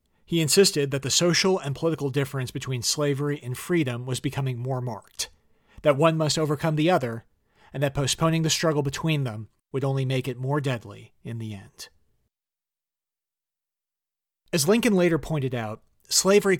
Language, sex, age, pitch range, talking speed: English, male, 40-59, 125-160 Hz, 160 wpm